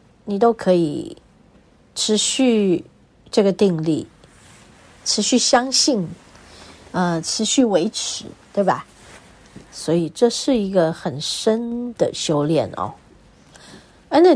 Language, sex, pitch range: Chinese, female, 170-245 Hz